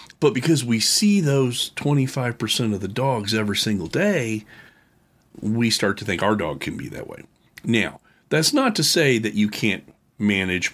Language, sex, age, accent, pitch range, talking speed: English, male, 40-59, American, 95-135 Hz, 175 wpm